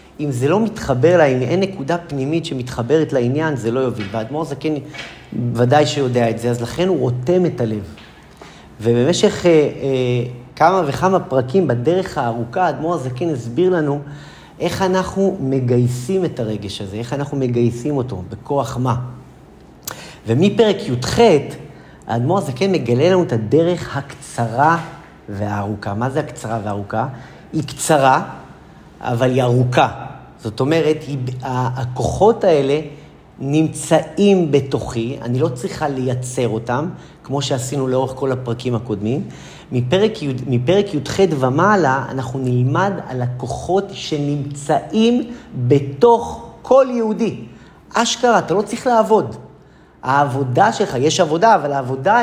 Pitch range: 125-170 Hz